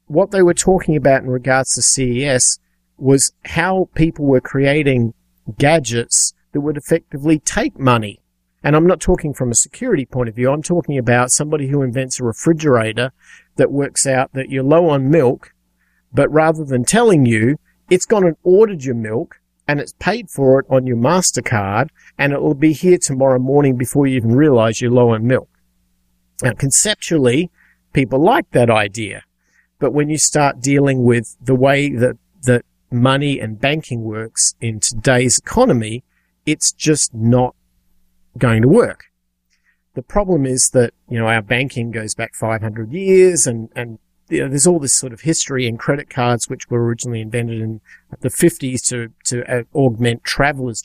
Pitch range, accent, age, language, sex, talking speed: 115-150 Hz, Australian, 50-69, English, male, 170 wpm